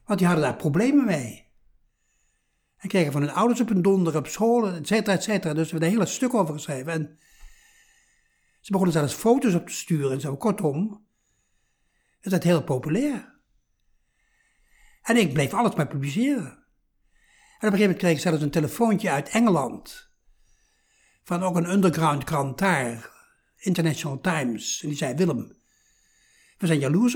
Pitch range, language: 155-220 Hz, Dutch